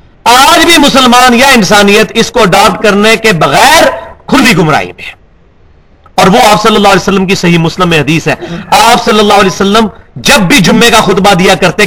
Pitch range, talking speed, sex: 175-235 Hz, 195 wpm, male